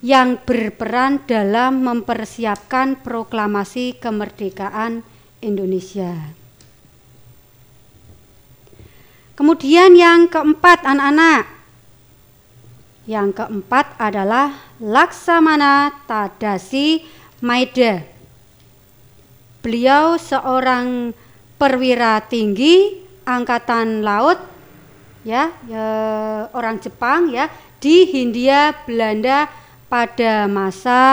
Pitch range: 200-285 Hz